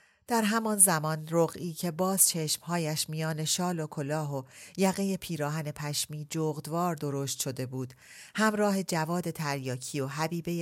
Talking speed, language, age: 135 wpm, Persian, 40-59